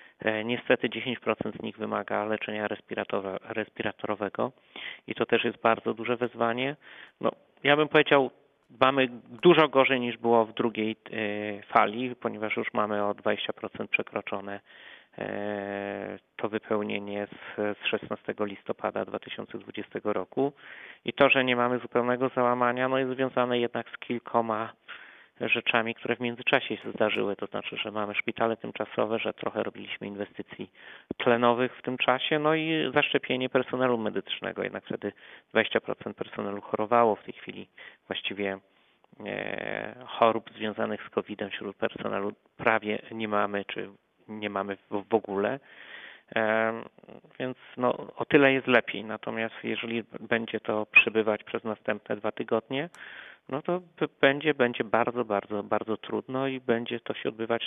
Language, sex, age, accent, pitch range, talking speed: Polish, male, 30-49, native, 105-125 Hz, 135 wpm